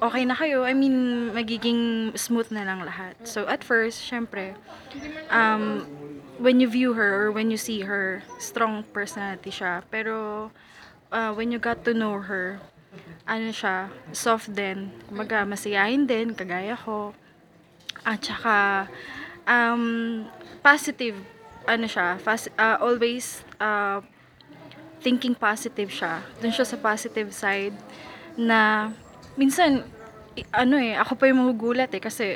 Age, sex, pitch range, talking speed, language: 20-39, female, 205-235 Hz, 135 wpm, Filipino